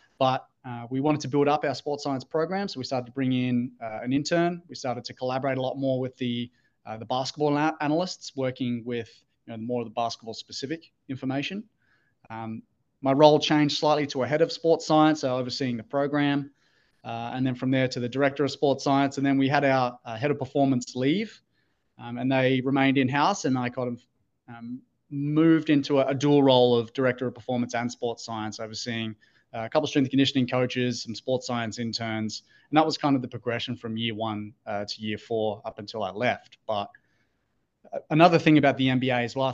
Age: 20-39